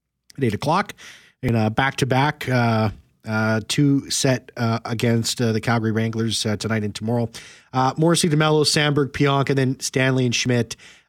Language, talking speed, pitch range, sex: English, 170 wpm, 105-130 Hz, male